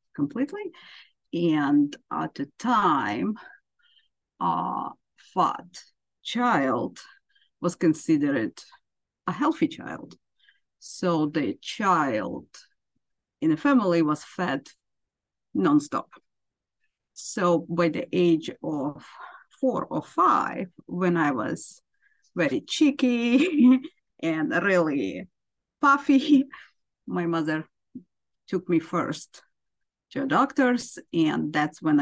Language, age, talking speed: English, 50-69, 90 wpm